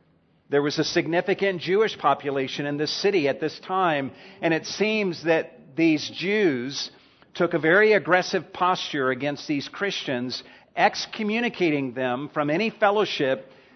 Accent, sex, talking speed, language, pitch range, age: American, male, 135 wpm, English, 140-180 Hz, 50-69